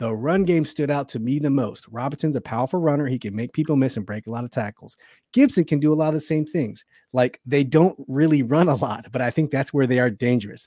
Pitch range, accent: 115-145 Hz, American